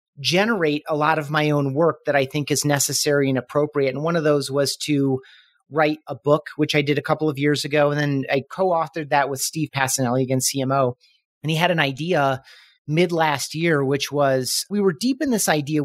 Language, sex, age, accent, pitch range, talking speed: English, male, 30-49, American, 135-160 Hz, 220 wpm